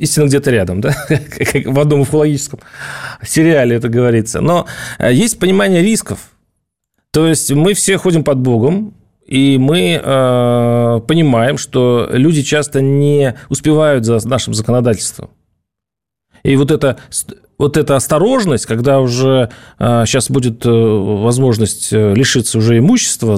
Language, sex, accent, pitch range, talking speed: Russian, male, native, 120-170 Hz, 125 wpm